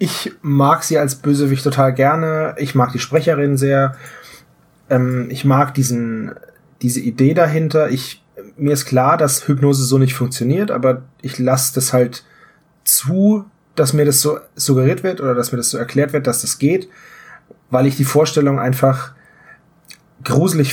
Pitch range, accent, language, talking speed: 125-150 Hz, German, German, 160 wpm